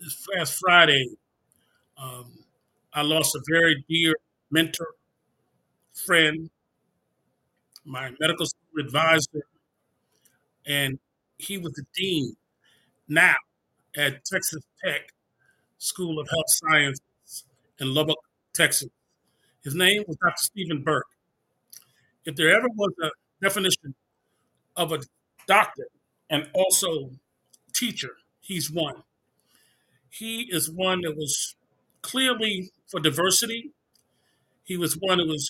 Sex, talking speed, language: male, 110 wpm, English